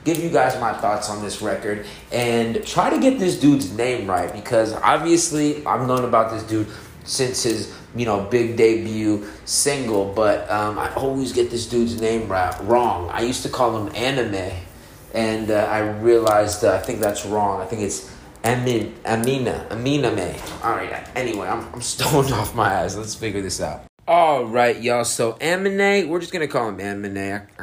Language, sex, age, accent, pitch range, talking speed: English, male, 30-49, American, 105-145 Hz, 185 wpm